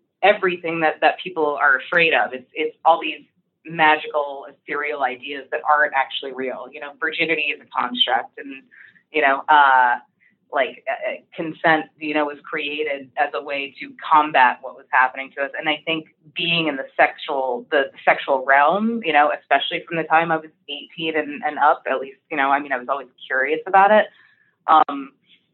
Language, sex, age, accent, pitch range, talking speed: English, female, 20-39, American, 140-175 Hz, 180 wpm